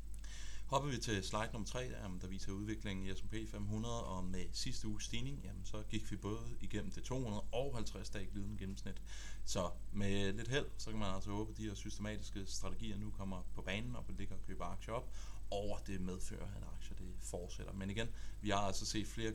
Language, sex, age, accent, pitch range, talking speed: Danish, male, 30-49, native, 95-110 Hz, 210 wpm